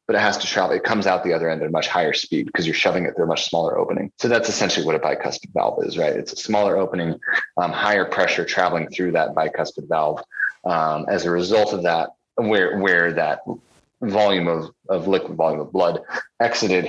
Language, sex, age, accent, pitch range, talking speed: English, male, 30-49, American, 85-115 Hz, 225 wpm